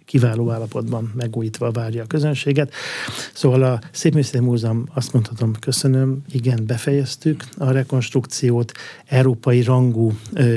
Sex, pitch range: male, 115-130 Hz